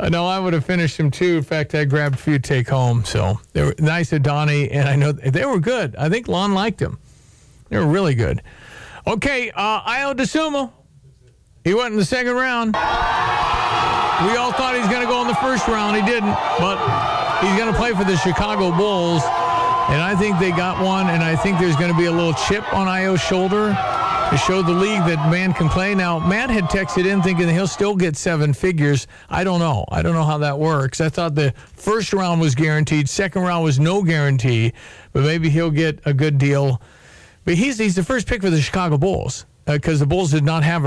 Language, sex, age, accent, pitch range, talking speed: English, male, 50-69, American, 145-190 Hz, 225 wpm